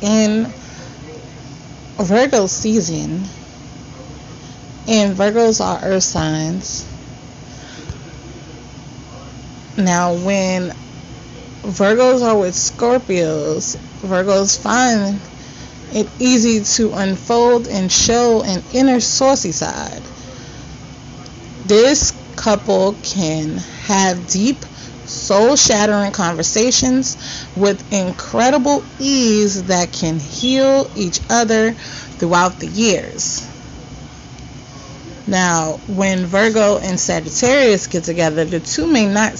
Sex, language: female, English